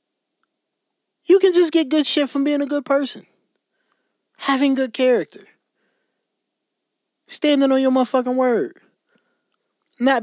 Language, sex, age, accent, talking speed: English, male, 20-39, American, 115 wpm